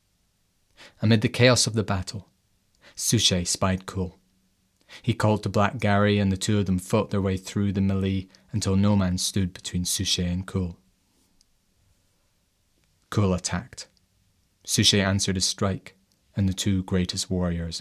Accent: British